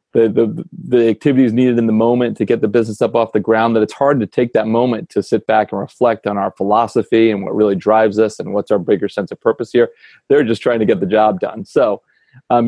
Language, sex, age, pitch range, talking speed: English, male, 30-49, 105-120 Hz, 255 wpm